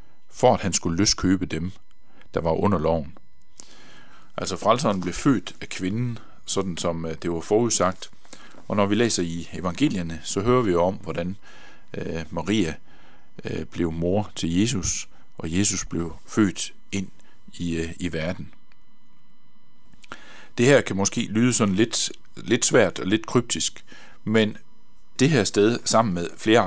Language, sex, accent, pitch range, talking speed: Danish, male, native, 85-110 Hz, 145 wpm